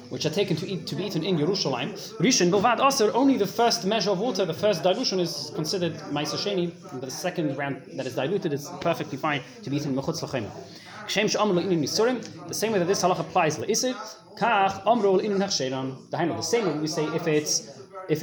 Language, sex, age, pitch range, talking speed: English, male, 20-39, 150-195 Hz, 160 wpm